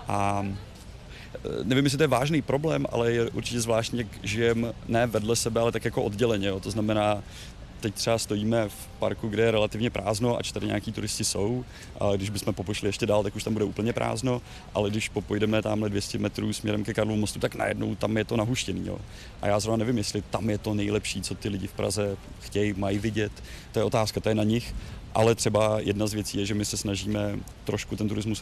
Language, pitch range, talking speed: Czech, 100-110 Hz, 215 wpm